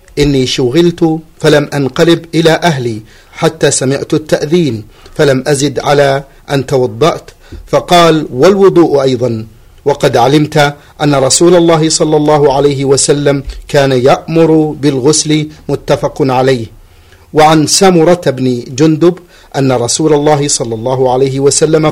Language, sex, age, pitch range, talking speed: Arabic, male, 50-69, 130-160 Hz, 115 wpm